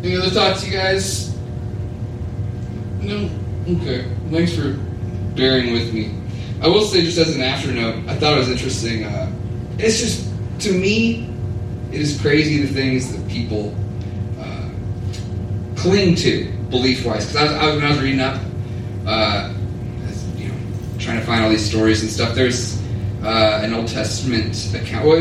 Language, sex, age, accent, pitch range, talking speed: English, male, 30-49, American, 100-120 Hz, 155 wpm